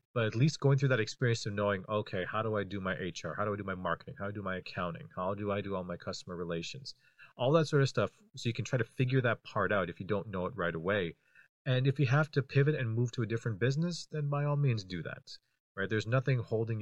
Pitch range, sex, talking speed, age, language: 95-125 Hz, male, 280 wpm, 30-49, English